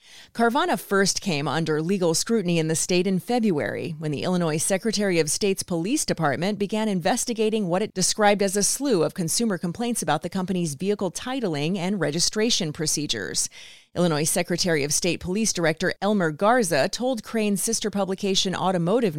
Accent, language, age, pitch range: American, English, 30-49, 165-210 Hz